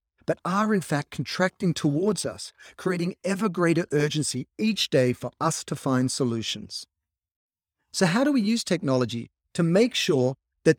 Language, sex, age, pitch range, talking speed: English, male, 40-59, 125-190 Hz, 155 wpm